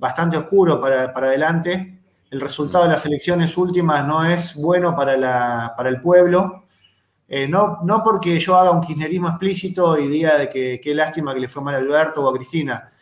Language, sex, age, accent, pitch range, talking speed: Spanish, male, 20-39, Argentinian, 130-170 Hz, 195 wpm